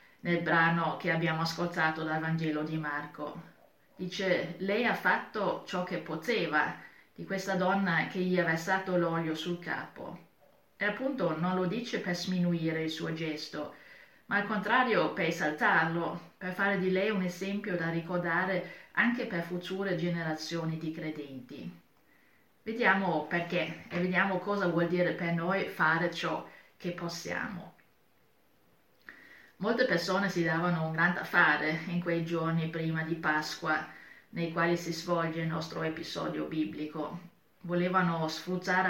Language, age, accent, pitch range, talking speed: Italian, 30-49, native, 160-190 Hz, 140 wpm